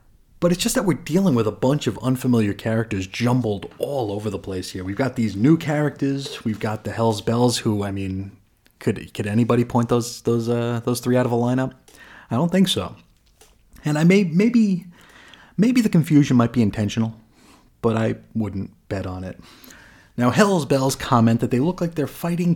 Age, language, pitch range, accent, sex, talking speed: 30-49, English, 105-135 Hz, American, male, 195 wpm